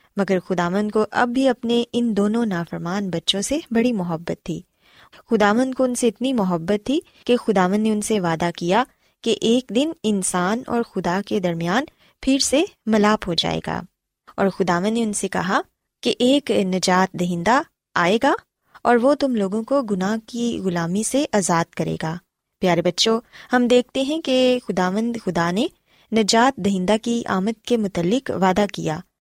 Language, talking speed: Urdu, 170 wpm